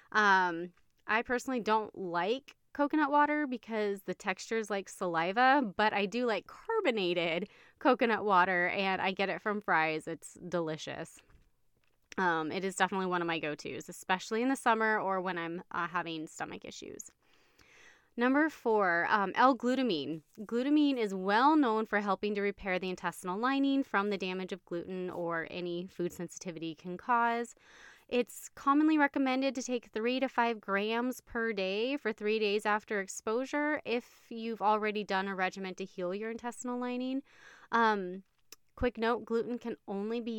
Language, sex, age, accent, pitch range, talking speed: English, female, 20-39, American, 185-240 Hz, 160 wpm